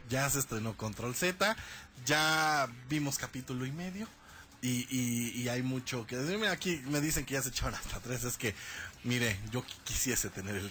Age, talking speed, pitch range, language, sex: 30-49, 190 wpm, 115-155 Hz, Spanish, male